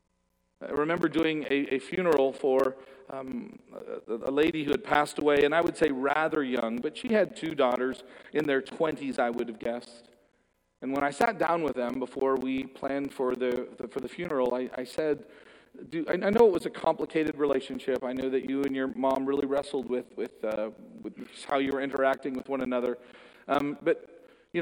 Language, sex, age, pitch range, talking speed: English, male, 40-59, 125-150 Hz, 200 wpm